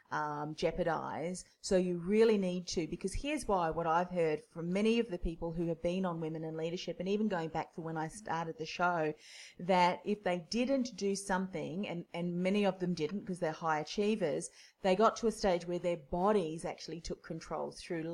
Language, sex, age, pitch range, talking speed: English, female, 30-49, 165-195 Hz, 210 wpm